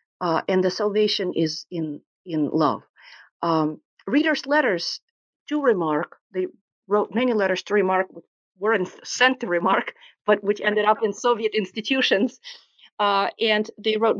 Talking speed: 150 wpm